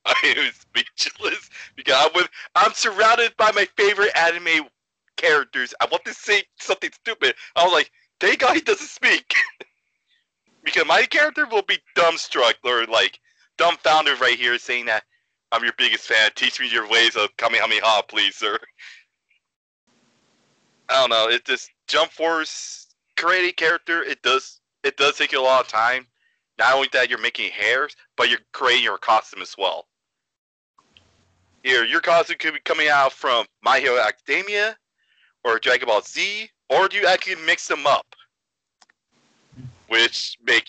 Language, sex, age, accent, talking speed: English, male, 30-49, American, 160 wpm